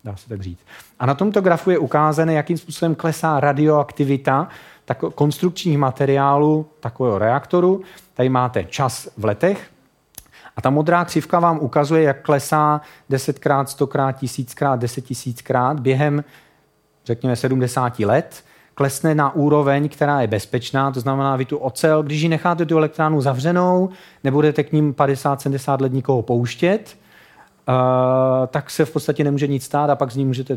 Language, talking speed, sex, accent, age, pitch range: Czech, 155 wpm, male, native, 40-59, 120-150 Hz